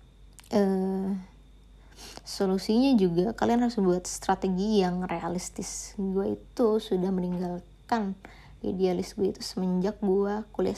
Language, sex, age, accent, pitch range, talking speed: Indonesian, female, 20-39, native, 185-215 Hz, 105 wpm